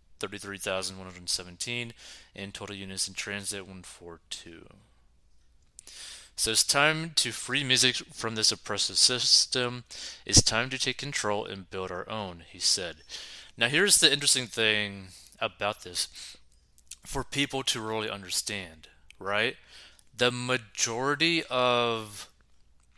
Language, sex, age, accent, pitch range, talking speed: English, male, 30-49, American, 90-120 Hz, 115 wpm